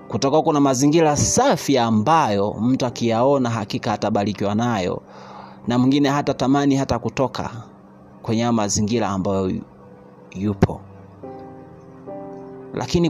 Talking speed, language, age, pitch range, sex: 95 wpm, Swahili, 30-49, 100-150 Hz, male